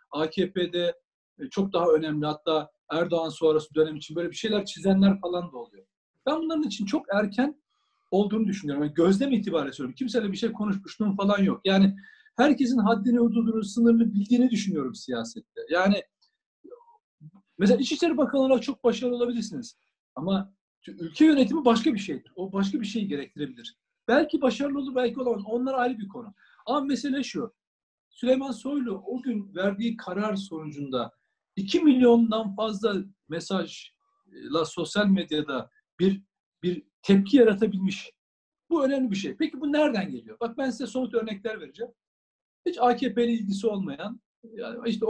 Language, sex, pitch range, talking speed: Turkish, male, 185-255 Hz, 145 wpm